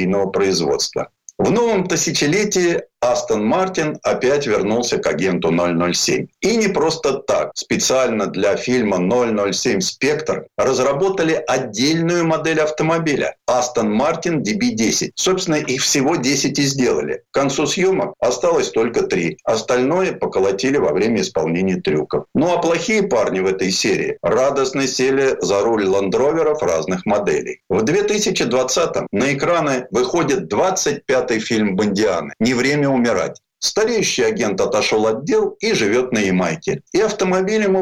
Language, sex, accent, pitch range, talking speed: Russian, male, native, 125-190 Hz, 130 wpm